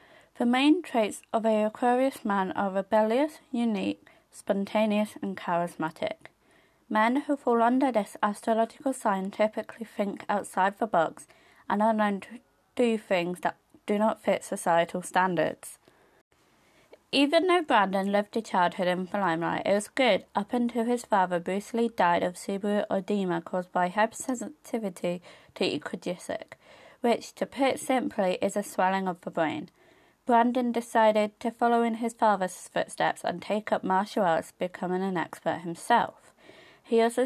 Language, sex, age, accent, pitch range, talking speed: English, female, 20-39, British, 190-240 Hz, 150 wpm